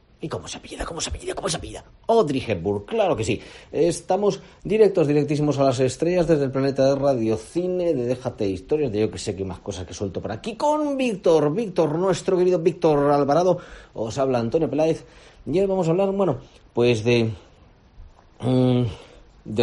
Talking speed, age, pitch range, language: 190 wpm, 40-59, 105-160 Hz, Spanish